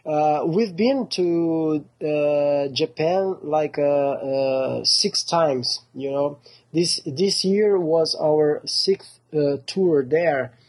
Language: English